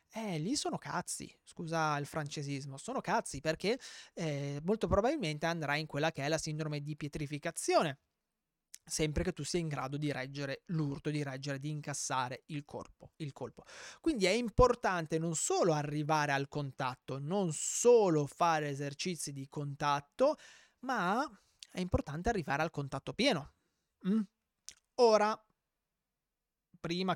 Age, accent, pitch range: 30-49, native, 145-185 Hz